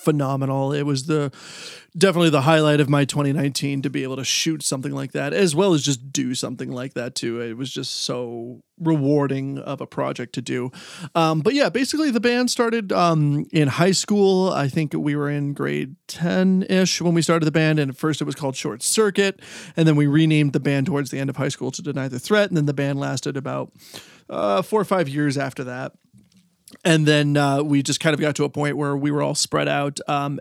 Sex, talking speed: male, 225 wpm